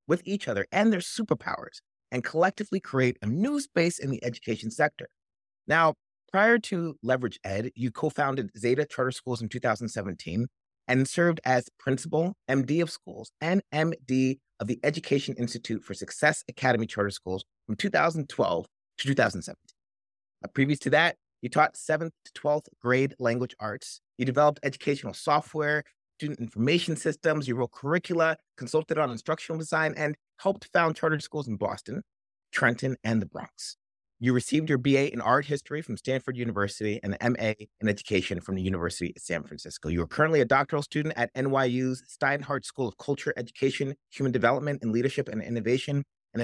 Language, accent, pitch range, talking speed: English, American, 115-150 Hz, 165 wpm